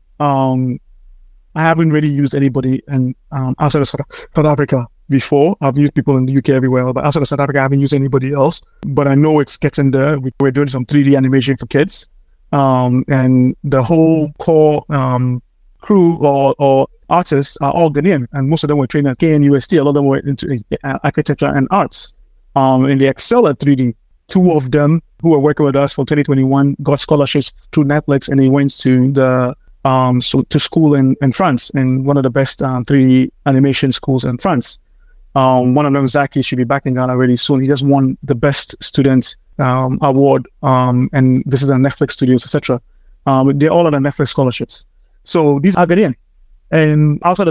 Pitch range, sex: 130-150 Hz, male